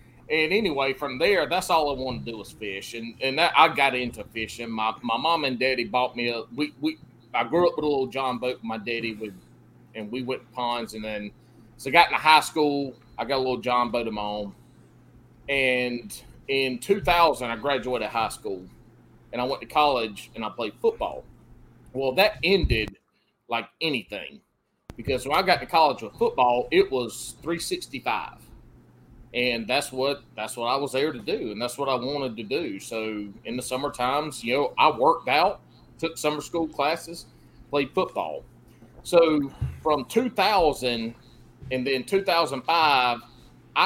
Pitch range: 120-145 Hz